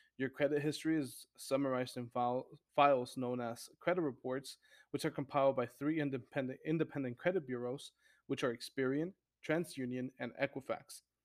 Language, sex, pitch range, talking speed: English, male, 130-150 Hz, 145 wpm